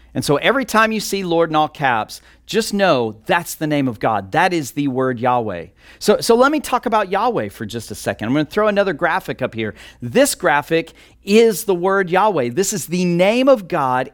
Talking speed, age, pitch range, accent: 220 wpm, 40-59, 140-190 Hz, American